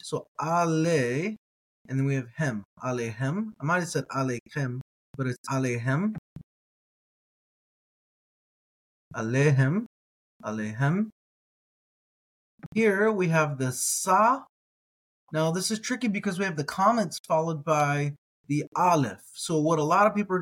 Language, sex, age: English, male, 20-39